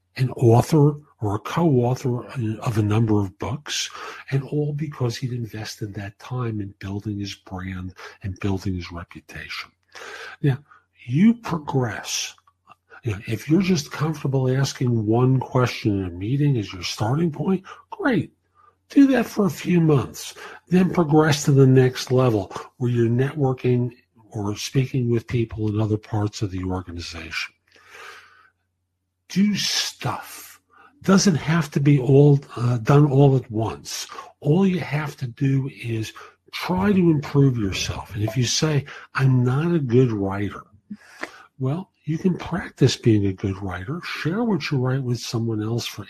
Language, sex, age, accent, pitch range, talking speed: English, male, 50-69, American, 110-150 Hz, 150 wpm